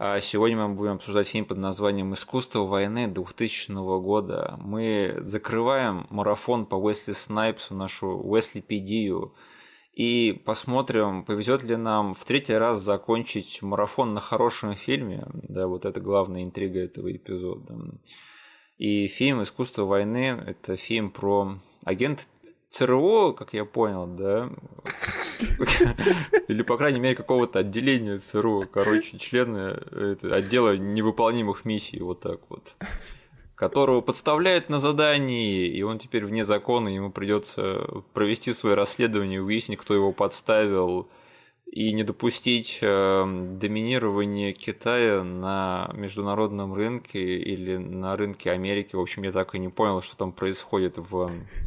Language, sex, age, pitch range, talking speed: Russian, male, 20-39, 95-115 Hz, 130 wpm